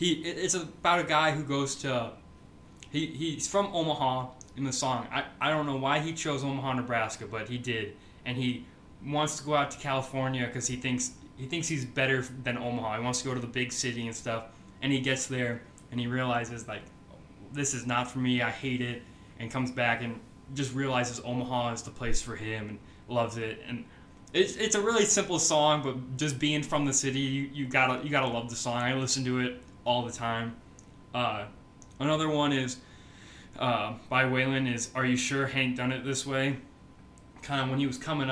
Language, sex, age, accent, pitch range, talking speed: English, male, 20-39, American, 120-140 Hz, 215 wpm